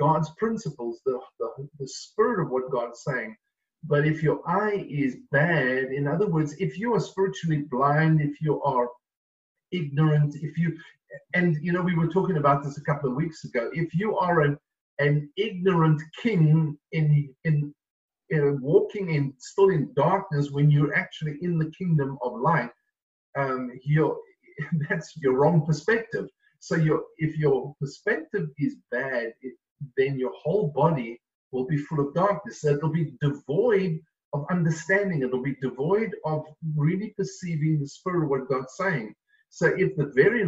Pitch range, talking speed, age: 140-180 Hz, 165 wpm, 50-69